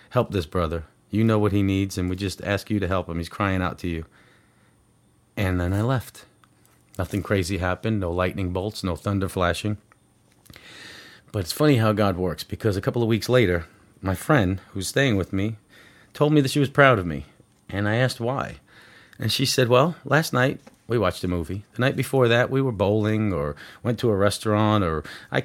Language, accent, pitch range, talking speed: English, American, 95-120 Hz, 205 wpm